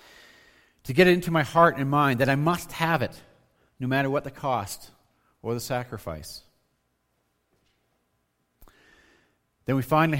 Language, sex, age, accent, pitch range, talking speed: English, male, 40-59, American, 90-150 Hz, 140 wpm